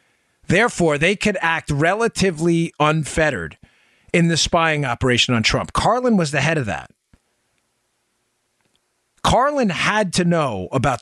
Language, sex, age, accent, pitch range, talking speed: English, male, 40-59, American, 150-205 Hz, 125 wpm